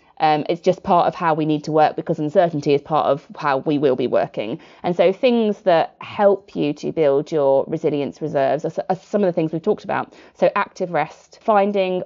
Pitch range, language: 160-215 Hz, English